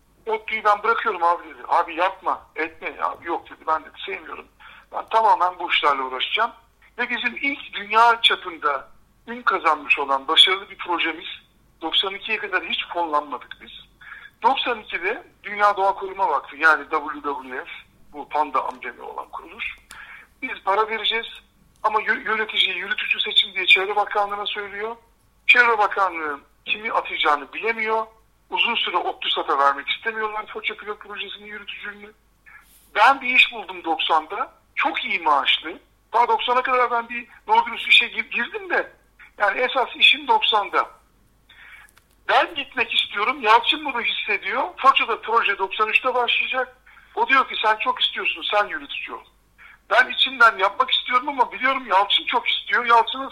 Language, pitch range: Turkish, 205-260 Hz